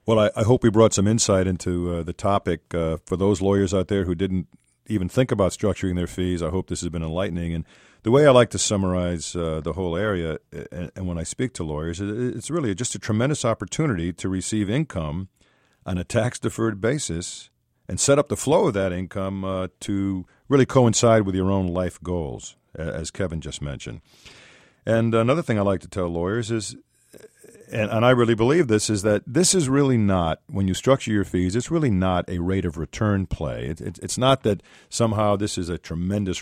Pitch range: 90-115 Hz